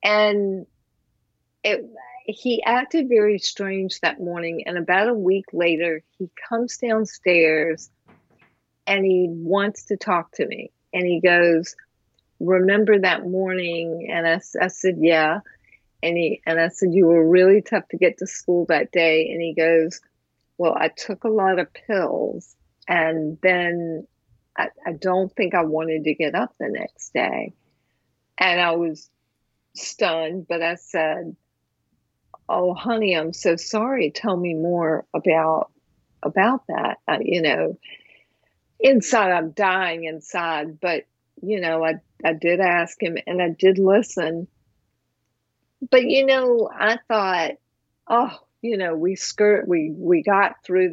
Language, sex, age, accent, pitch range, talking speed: English, female, 50-69, American, 165-205 Hz, 145 wpm